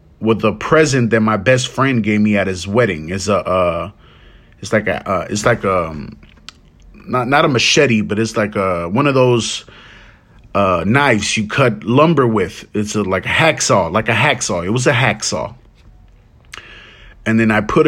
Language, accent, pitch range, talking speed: English, American, 105-135 Hz, 190 wpm